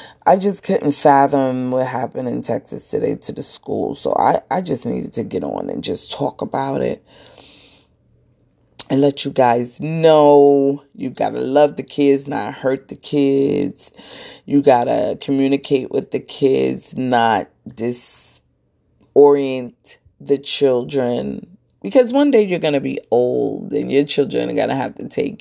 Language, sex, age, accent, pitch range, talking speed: English, female, 30-49, American, 130-180 Hz, 160 wpm